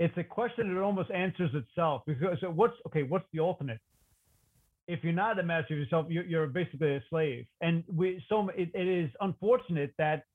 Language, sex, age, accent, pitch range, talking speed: English, male, 40-59, American, 150-200 Hz, 195 wpm